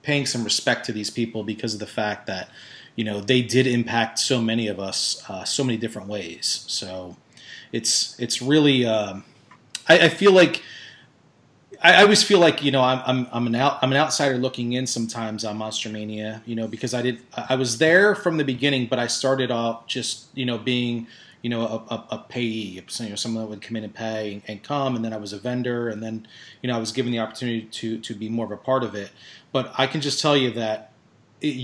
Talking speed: 230 wpm